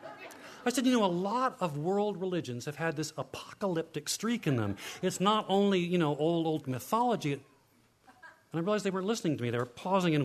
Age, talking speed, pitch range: 40-59, 210 wpm, 140-190 Hz